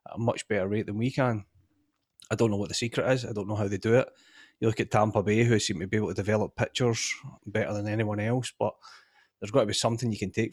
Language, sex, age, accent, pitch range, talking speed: English, male, 30-49, British, 100-115 Hz, 275 wpm